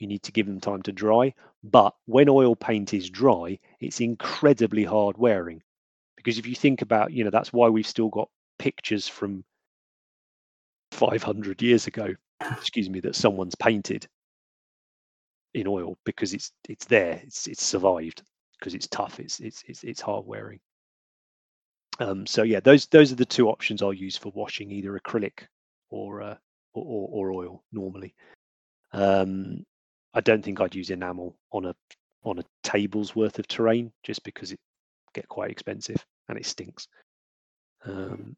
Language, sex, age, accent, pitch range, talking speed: English, male, 30-49, British, 95-120 Hz, 165 wpm